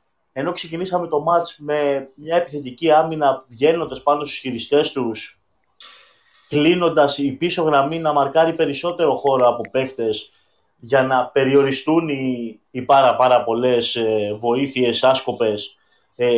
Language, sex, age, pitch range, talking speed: Greek, male, 20-39, 120-145 Hz, 130 wpm